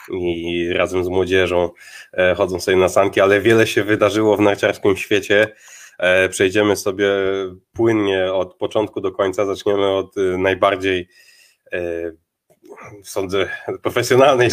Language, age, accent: Polish, 20-39, native